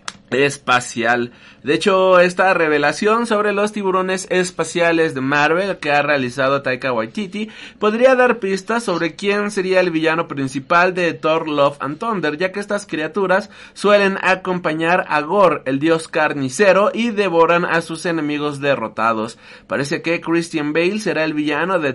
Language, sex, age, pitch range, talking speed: Spanish, male, 30-49, 150-200 Hz, 150 wpm